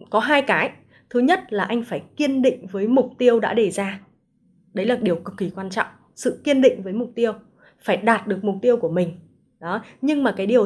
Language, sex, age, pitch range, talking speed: Vietnamese, female, 20-39, 185-255 Hz, 230 wpm